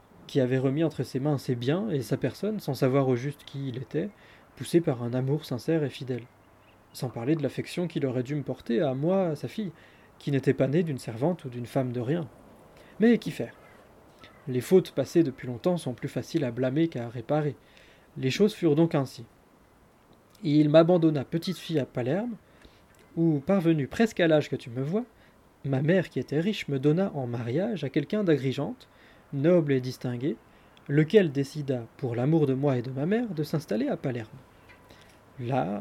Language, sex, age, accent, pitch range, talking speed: French, male, 20-39, French, 130-165 Hz, 195 wpm